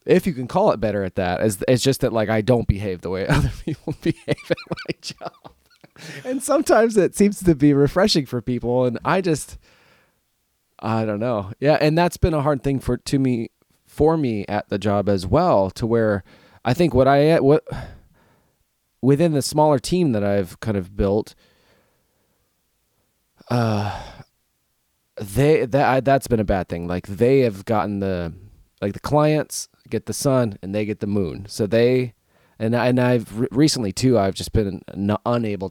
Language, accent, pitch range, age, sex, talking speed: English, American, 100-135 Hz, 20-39, male, 185 wpm